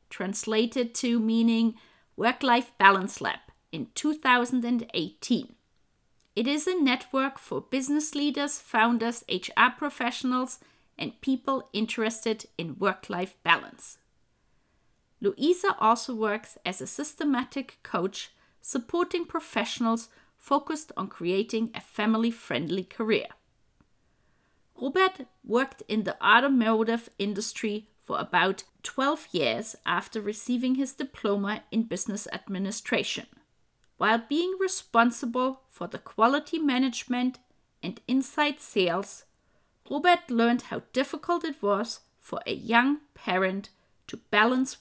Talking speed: 105 wpm